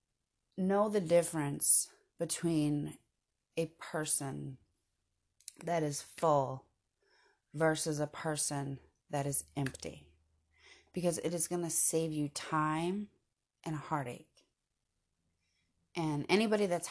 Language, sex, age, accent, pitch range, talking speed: English, female, 30-49, American, 115-185 Hz, 105 wpm